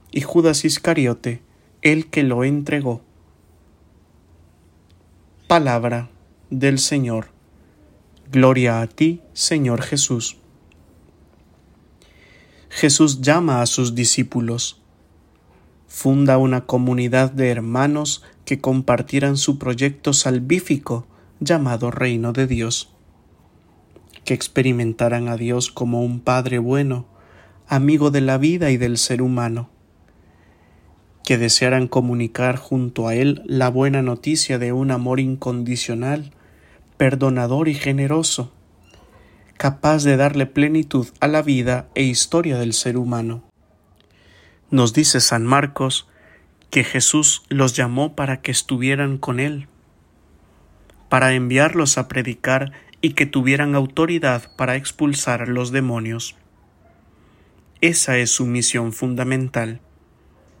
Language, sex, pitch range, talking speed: English, male, 90-135 Hz, 110 wpm